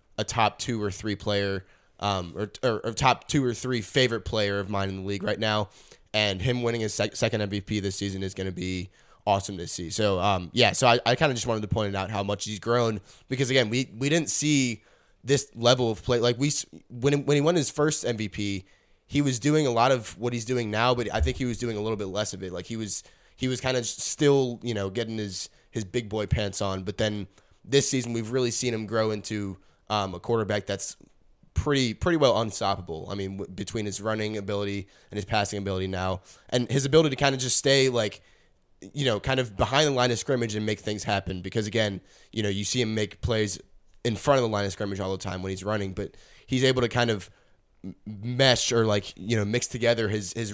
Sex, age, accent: male, 20-39, American